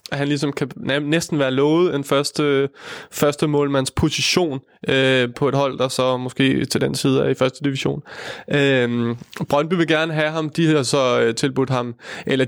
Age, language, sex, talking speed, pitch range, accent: 20-39, Danish, male, 185 wpm, 130-145 Hz, native